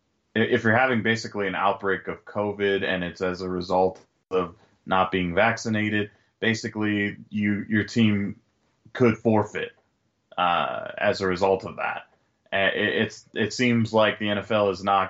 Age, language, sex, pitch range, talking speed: 20-39, English, male, 95-110 Hz, 150 wpm